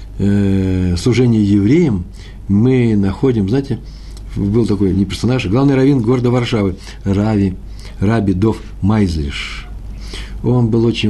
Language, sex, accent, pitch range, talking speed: Russian, male, native, 100-125 Hz, 110 wpm